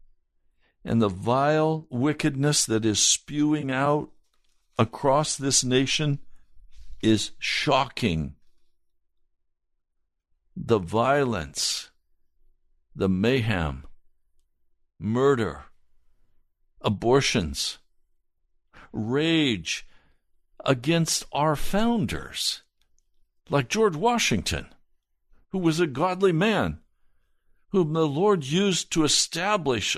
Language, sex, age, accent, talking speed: English, male, 60-79, American, 75 wpm